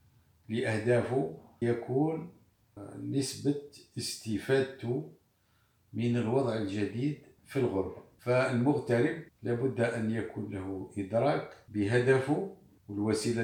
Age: 50-69